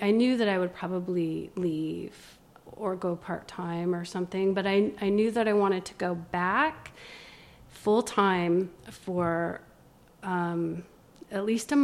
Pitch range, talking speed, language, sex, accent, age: 180-205 Hz, 140 wpm, English, female, American, 30-49